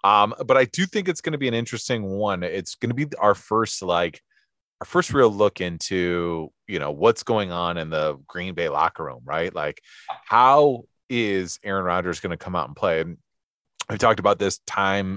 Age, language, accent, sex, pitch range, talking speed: 30-49, English, American, male, 90-115 Hz, 210 wpm